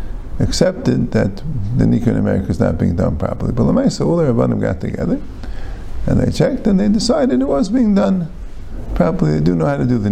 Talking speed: 220 wpm